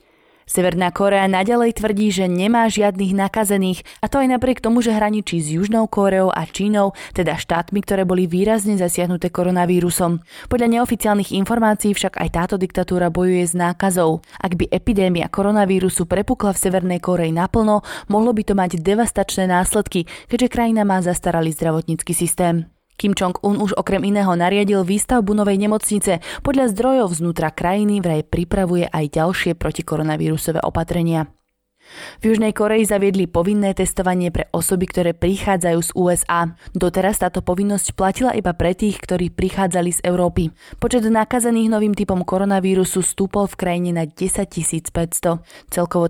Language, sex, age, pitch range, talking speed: Slovak, female, 20-39, 175-205 Hz, 145 wpm